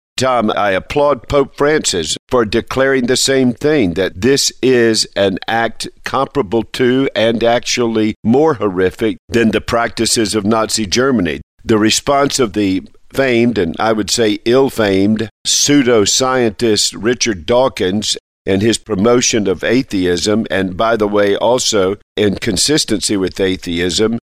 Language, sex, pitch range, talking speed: English, male, 100-120 Hz, 135 wpm